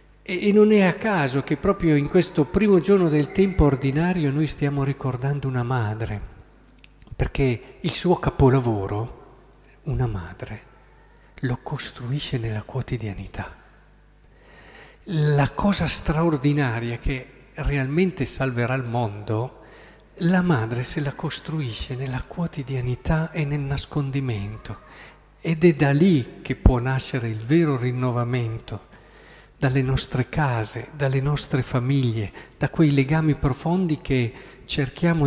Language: Italian